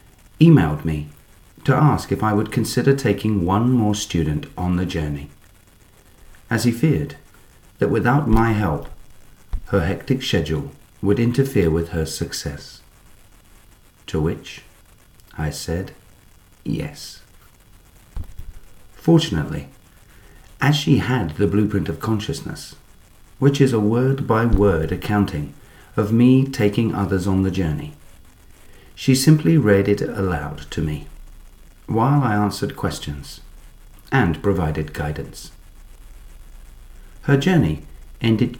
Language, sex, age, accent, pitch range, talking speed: English, male, 40-59, British, 85-115 Hz, 115 wpm